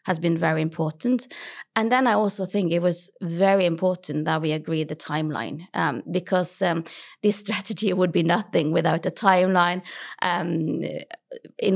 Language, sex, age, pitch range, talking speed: English, female, 30-49, 165-195 Hz, 160 wpm